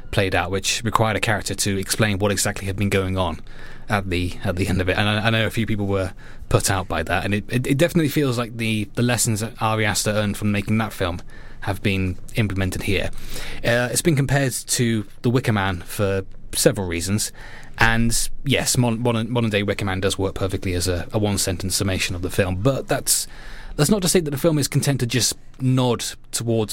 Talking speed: 220 wpm